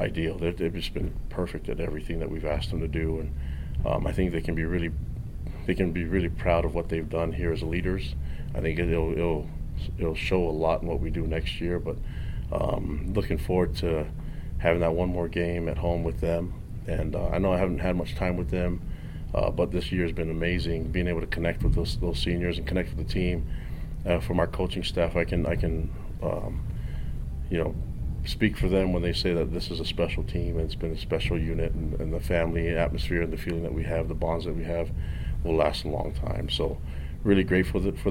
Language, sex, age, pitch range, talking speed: English, male, 30-49, 80-90 Hz, 230 wpm